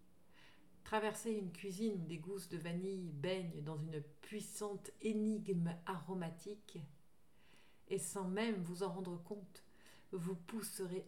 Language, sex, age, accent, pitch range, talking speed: French, female, 50-69, French, 165-205 Hz, 125 wpm